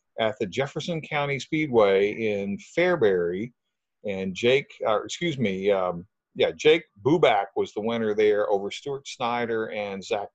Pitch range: 105-165 Hz